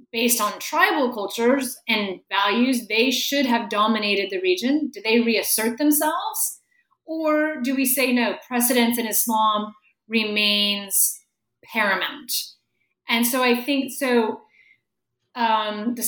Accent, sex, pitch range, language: American, female, 225-275 Hz, English